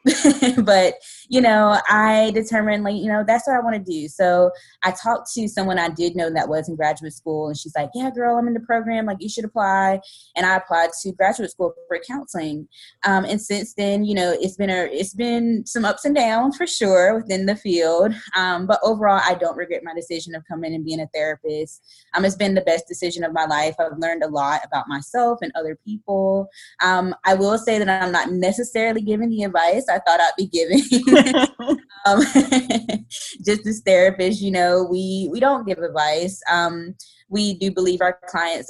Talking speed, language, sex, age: 205 wpm, English, female, 20-39